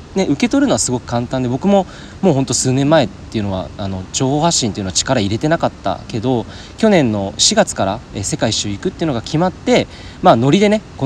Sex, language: male, Japanese